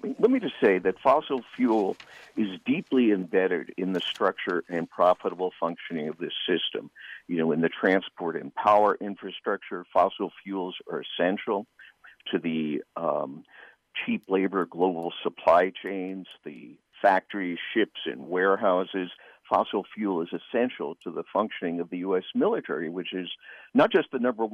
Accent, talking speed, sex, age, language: American, 150 wpm, male, 50-69, English